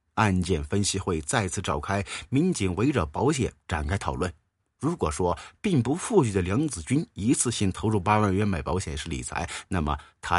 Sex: male